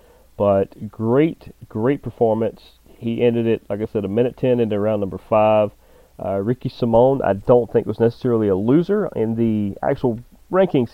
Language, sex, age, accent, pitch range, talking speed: English, male, 30-49, American, 90-115 Hz, 165 wpm